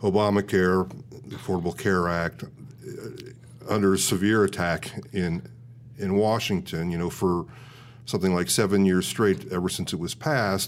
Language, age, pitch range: English, 40-59, 90-120 Hz